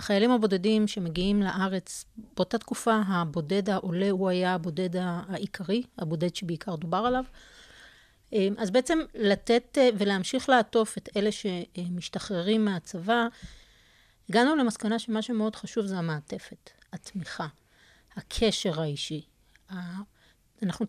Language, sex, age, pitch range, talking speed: Hebrew, female, 40-59, 180-220 Hz, 105 wpm